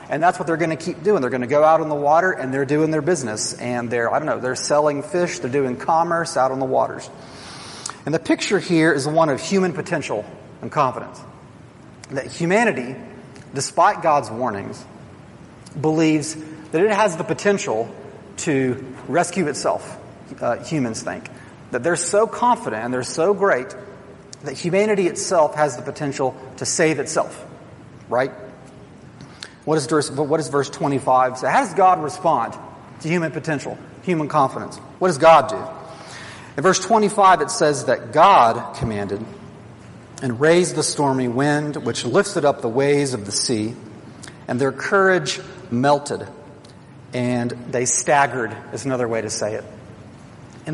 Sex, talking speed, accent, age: male, 165 wpm, American, 40-59